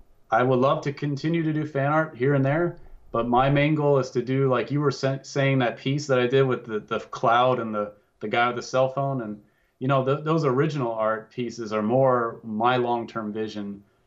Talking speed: 220 wpm